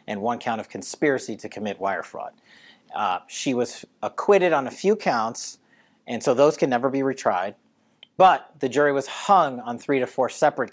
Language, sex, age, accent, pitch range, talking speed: English, male, 40-59, American, 105-140 Hz, 190 wpm